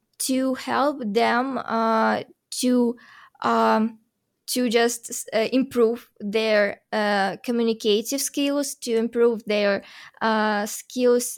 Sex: female